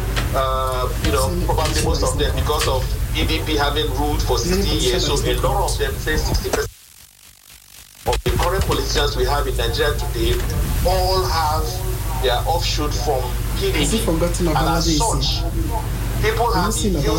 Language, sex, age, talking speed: English, male, 50-69, 150 wpm